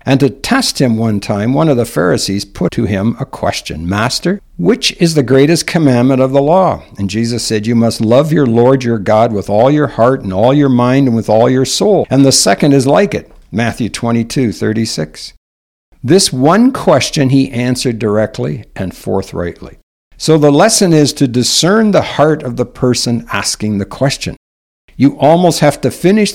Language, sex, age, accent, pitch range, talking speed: English, male, 60-79, American, 110-140 Hz, 190 wpm